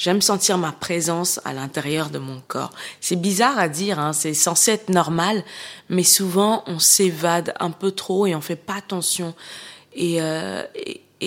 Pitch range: 160-195 Hz